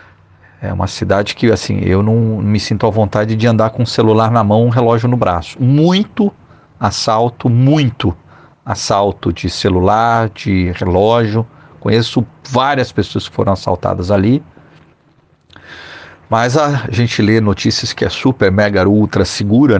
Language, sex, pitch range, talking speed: Portuguese, male, 105-130 Hz, 145 wpm